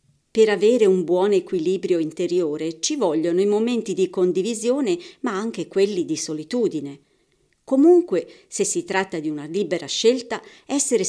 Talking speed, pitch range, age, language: 140 wpm, 175-280 Hz, 50-69, Italian